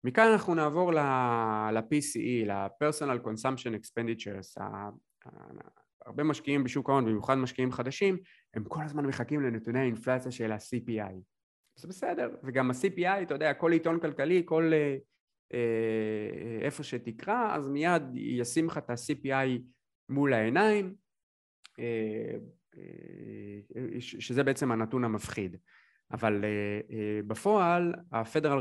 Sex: male